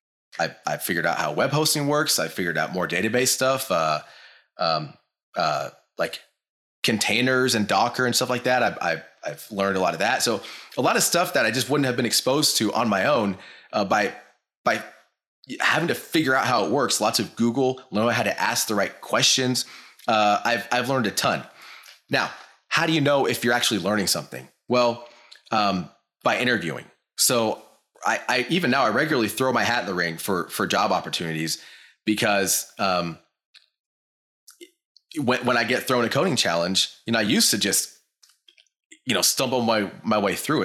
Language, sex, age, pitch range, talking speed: English, male, 30-49, 95-125 Hz, 190 wpm